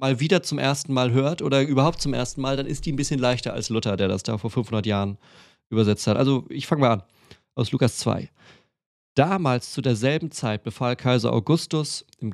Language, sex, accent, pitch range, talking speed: German, male, German, 110-135 Hz, 210 wpm